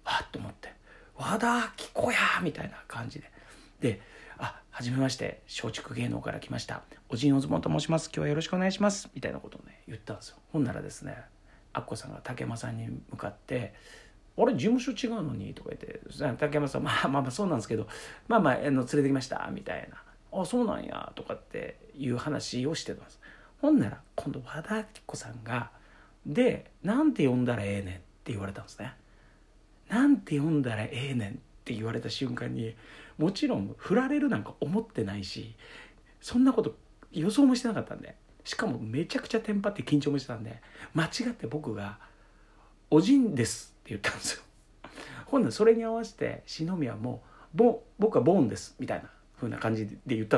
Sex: male